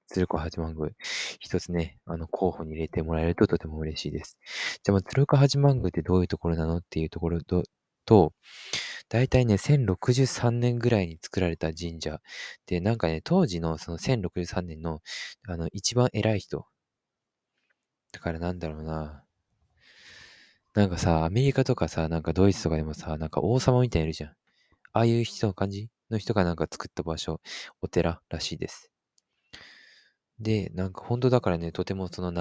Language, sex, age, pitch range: English, male, 20-39, 80-110 Hz